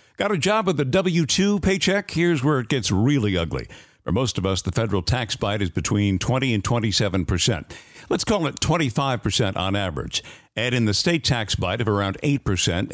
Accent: American